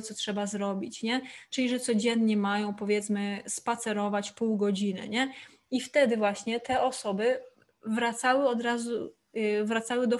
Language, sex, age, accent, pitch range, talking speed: Polish, female, 20-39, native, 210-240 Hz, 140 wpm